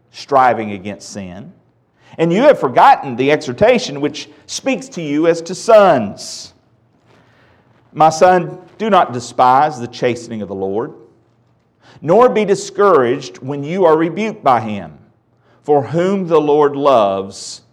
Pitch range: 120-195 Hz